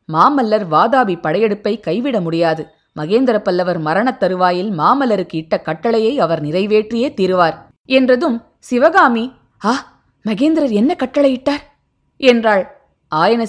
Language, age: Tamil, 20-39